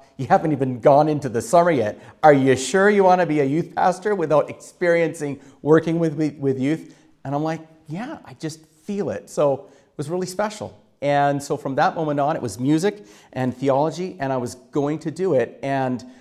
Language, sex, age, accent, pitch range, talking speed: English, male, 40-59, American, 130-170 Hz, 210 wpm